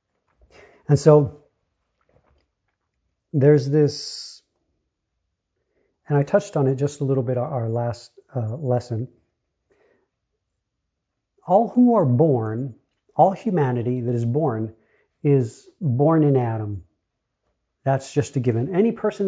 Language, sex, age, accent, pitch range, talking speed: English, male, 40-59, American, 125-170 Hz, 110 wpm